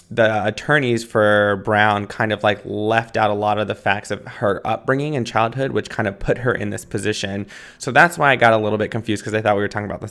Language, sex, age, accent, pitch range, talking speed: English, male, 20-39, American, 105-115 Hz, 260 wpm